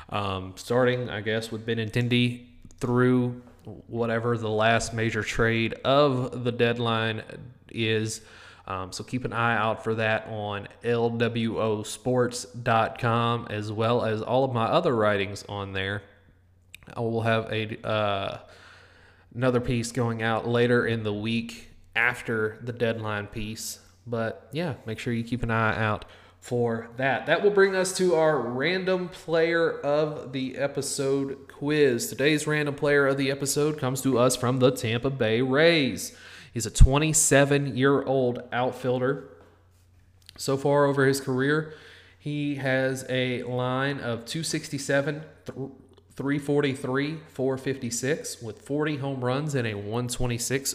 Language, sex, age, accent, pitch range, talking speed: English, male, 20-39, American, 110-135 Hz, 135 wpm